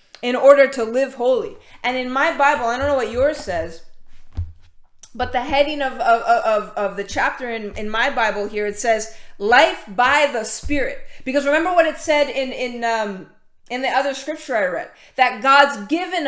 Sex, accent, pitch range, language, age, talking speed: female, American, 225-280 Hz, English, 30-49, 185 wpm